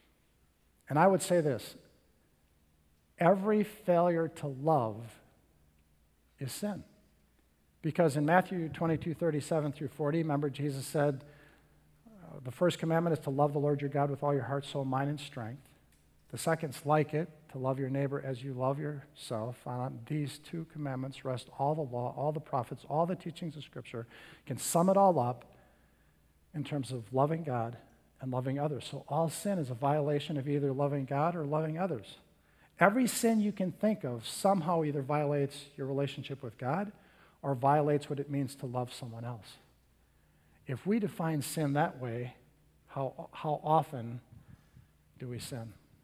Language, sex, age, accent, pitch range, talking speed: English, male, 50-69, American, 125-155 Hz, 165 wpm